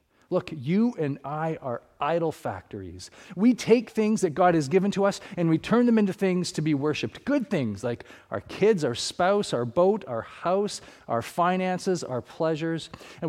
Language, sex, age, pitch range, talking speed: English, male, 40-59, 120-175 Hz, 185 wpm